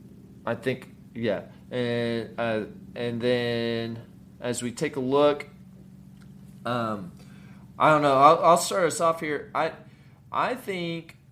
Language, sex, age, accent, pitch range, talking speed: English, male, 20-39, American, 110-135 Hz, 135 wpm